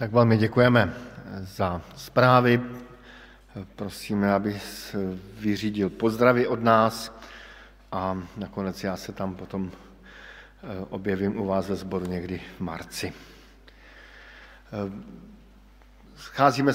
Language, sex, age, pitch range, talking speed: Slovak, male, 50-69, 100-120 Hz, 95 wpm